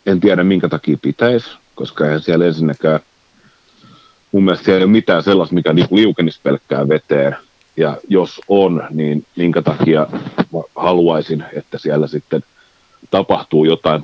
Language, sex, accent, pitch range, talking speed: Finnish, male, native, 75-95 Hz, 140 wpm